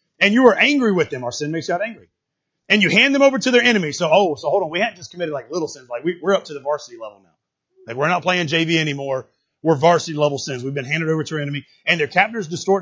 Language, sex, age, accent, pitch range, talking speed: English, male, 30-49, American, 150-215 Hz, 295 wpm